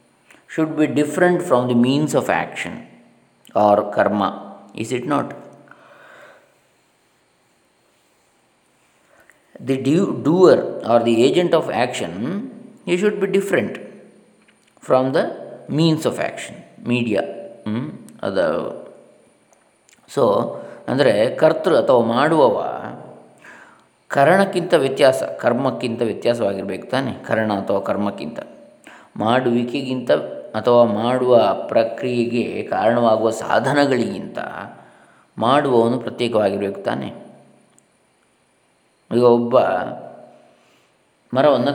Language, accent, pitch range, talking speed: Kannada, native, 115-155 Hz, 80 wpm